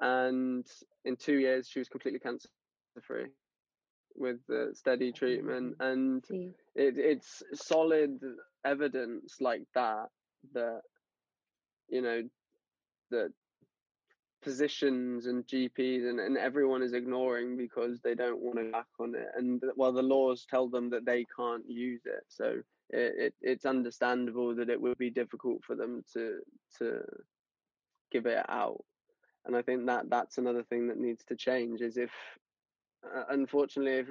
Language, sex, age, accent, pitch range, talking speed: English, male, 20-39, British, 120-135 Hz, 145 wpm